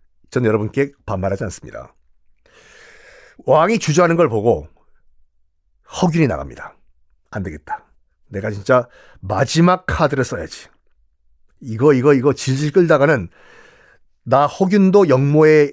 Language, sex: Korean, male